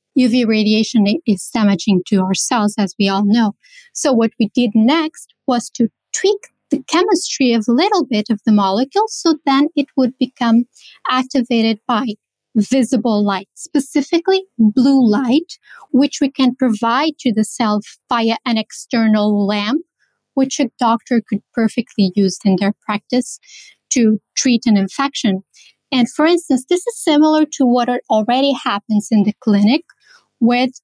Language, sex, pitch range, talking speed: English, female, 215-275 Hz, 150 wpm